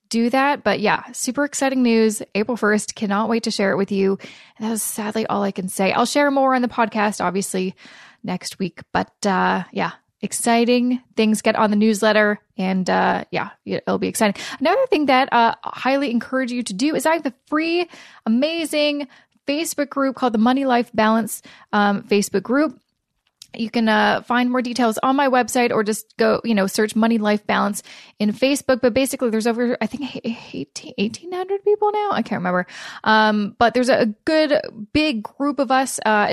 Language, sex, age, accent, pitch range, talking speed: English, female, 20-39, American, 215-270 Hz, 190 wpm